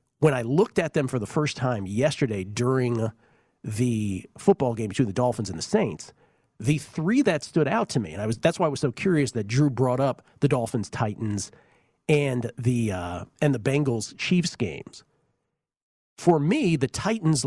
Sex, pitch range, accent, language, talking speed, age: male, 115-150 Hz, American, English, 180 wpm, 40-59